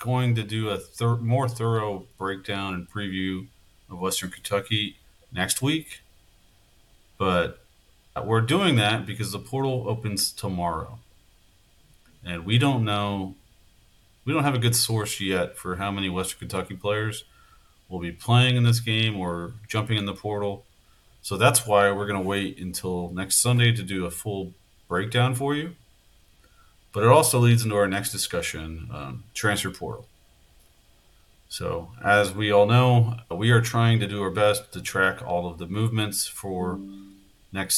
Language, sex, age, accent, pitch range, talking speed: English, male, 40-59, American, 95-115 Hz, 155 wpm